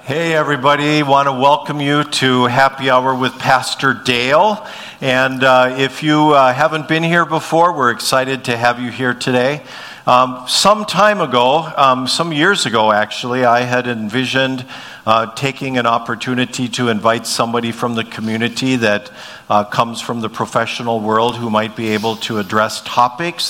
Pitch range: 125-155 Hz